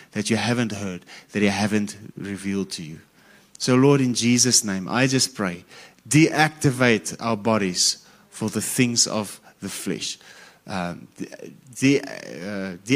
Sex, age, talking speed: male, 30-49, 135 wpm